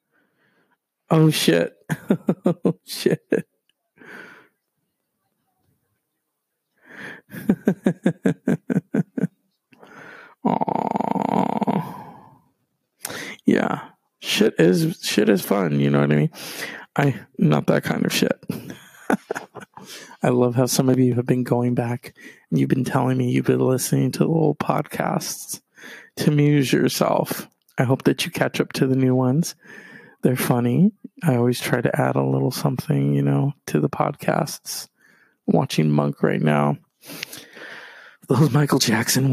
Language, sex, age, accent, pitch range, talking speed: English, male, 50-69, American, 125-170 Hz, 120 wpm